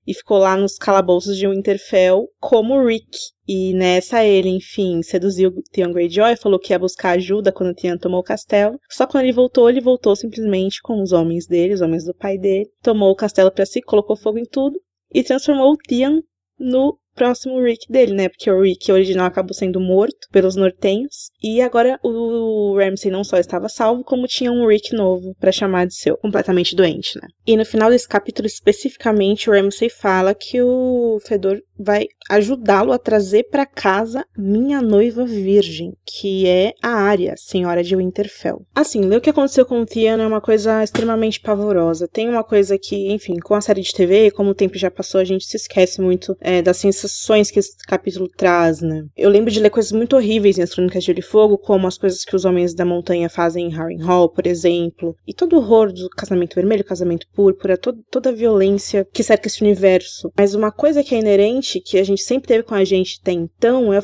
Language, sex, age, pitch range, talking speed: Portuguese, female, 20-39, 185-230 Hz, 210 wpm